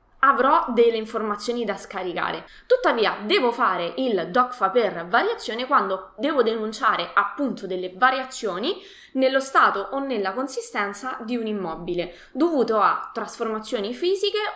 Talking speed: 125 wpm